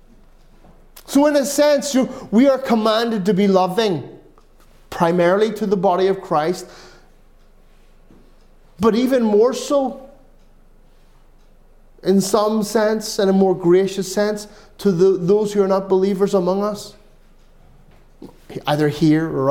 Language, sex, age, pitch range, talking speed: English, male, 30-49, 170-220 Hz, 125 wpm